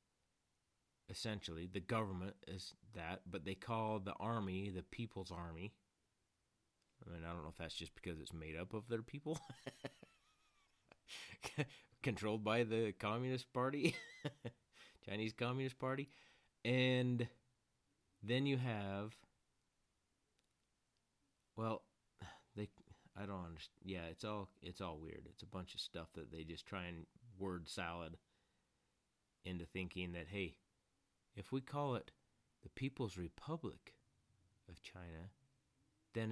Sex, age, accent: male, 30-49, American